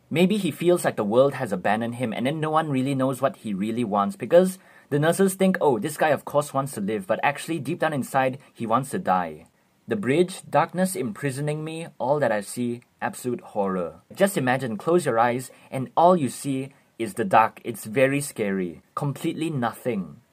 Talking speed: 200 wpm